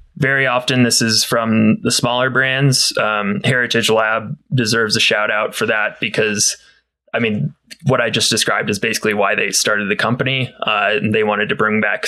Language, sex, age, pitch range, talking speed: English, male, 20-39, 115-135 Hz, 185 wpm